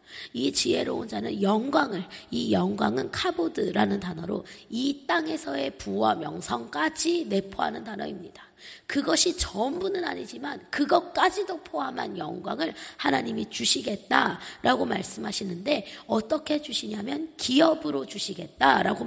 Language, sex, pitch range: Korean, female, 240-345 Hz